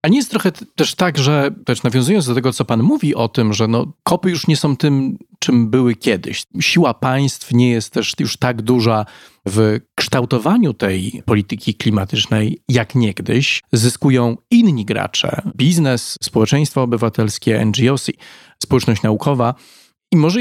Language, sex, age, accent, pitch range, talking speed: Polish, male, 40-59, native, 115-155 Hz, 155 wpm